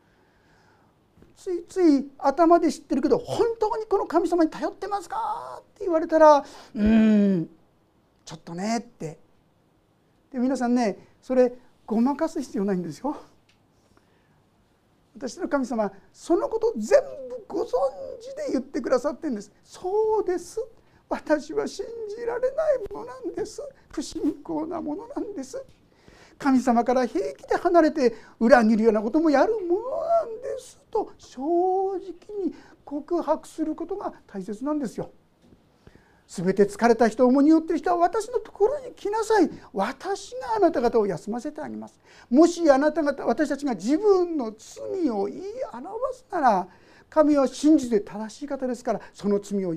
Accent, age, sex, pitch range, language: native, 40-59, male, 235-380 Hz, Japanese